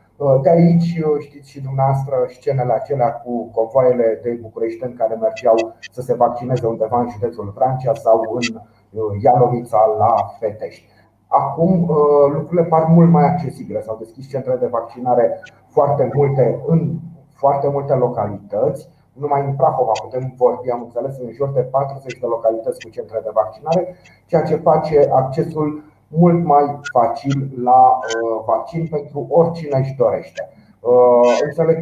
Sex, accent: male, native